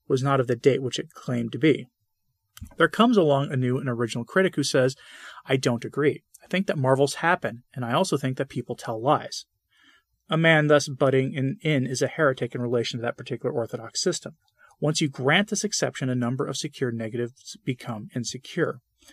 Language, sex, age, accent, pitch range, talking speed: English, male, 30-49, American, 125-160 Hz, 200 wpm